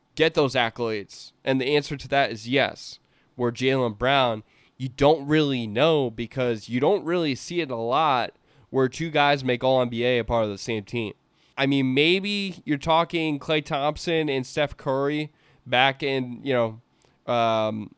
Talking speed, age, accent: 175 wpm, 20-39, American